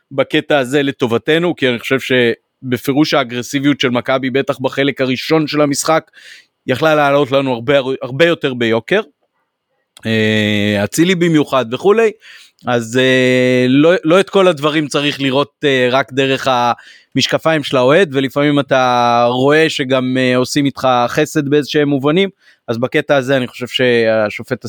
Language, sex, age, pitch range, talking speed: Hebrew, male, 30-49, 125-150 Hz, 130 wpm